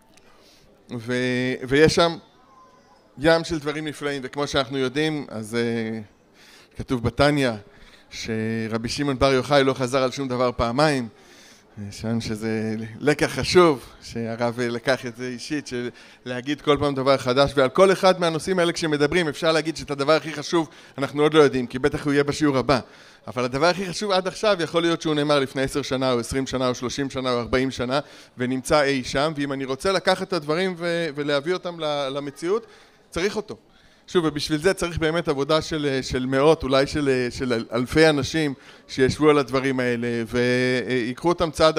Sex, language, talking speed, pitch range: male, Hebrew, 170 wpm, 125-155 Hz